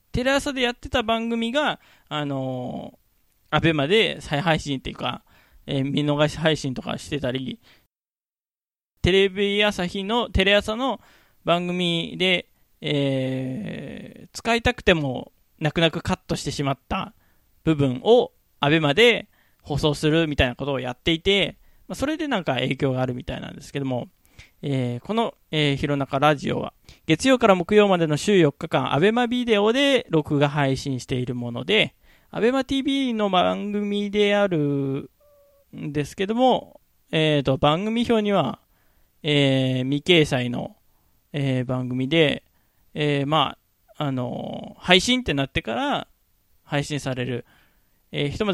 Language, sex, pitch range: Japanese, male, 140-210 Hz